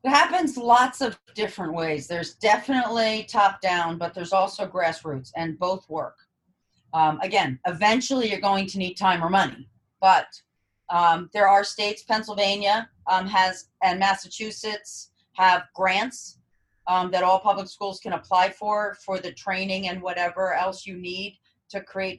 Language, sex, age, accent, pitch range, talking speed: English, female, 40-59, American, 165-200 Hz, 155 wpm